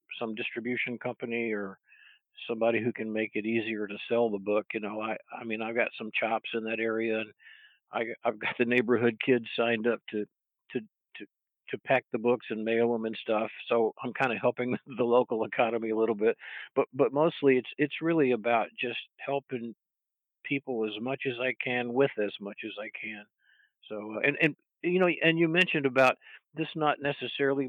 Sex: male